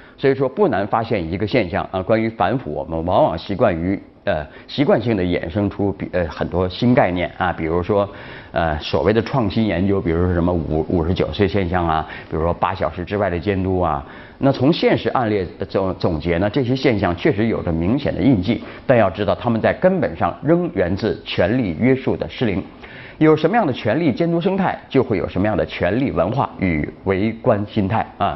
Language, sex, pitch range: Chinese, male, 90-135 Hz